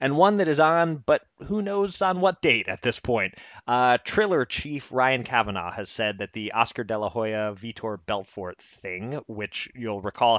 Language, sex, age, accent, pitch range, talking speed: English, male, 30-49, American, 105-130 Hz, 190 wpm